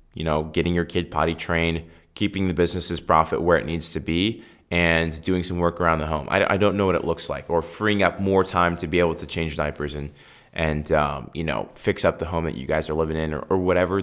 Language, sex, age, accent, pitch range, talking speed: English, male, 20-39, American, 80-90 Hz, 255 wpm